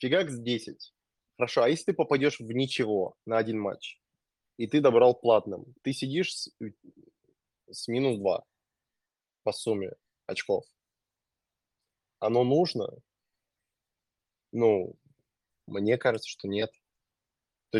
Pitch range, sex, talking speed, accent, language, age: 105-125 Hz, male, 110 wpm, native, Russian, 20-39